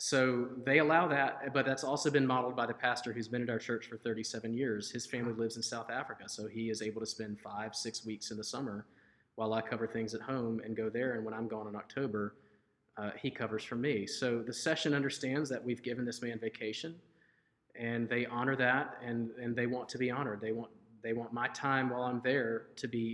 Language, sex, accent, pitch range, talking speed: English, male, American, 115-135 Hz, 235 wpm